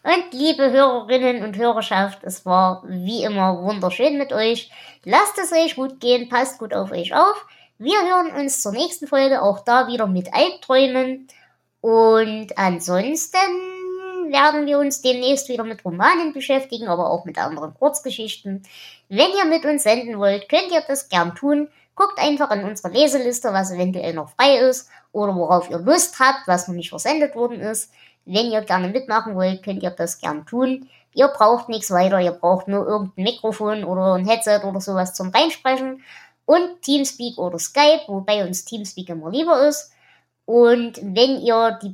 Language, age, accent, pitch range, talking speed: German, 20-39, German, 190-275 Hz, 170 wpm